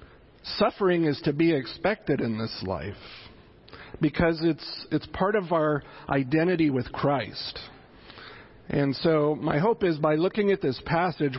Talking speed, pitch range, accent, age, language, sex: 140 wpm, 130-165 Hz, American, 50-69, English, male